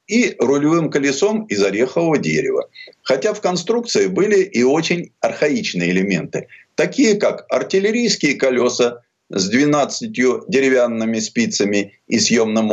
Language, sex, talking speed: Russian, male, 115 wpm